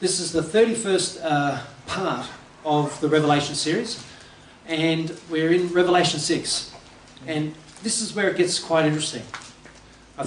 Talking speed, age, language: 140 wpm, 40-59, English